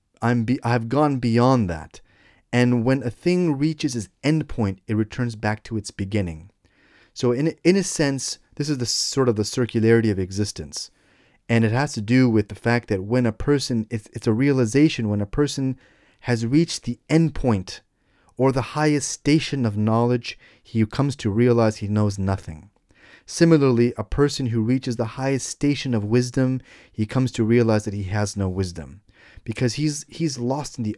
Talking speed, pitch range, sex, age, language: 185 wpm, 105-135 Hz, male, 30-49, English